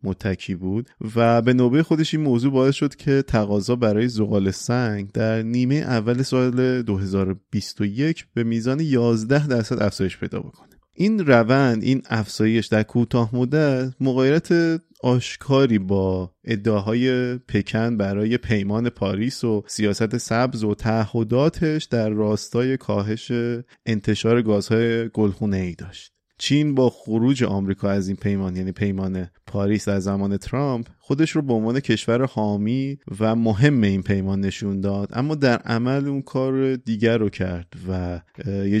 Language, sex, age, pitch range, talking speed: Persian, male, 30-49, 105-130 Hz, 140 wpm